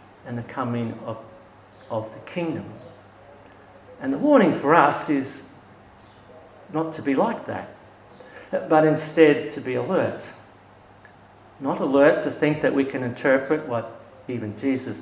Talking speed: 135 wpm